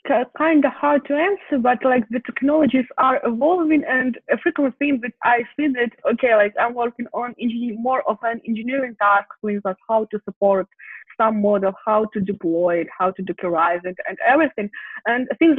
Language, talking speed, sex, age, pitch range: English, 185 wpm, female, 20-39, 205-260 Hz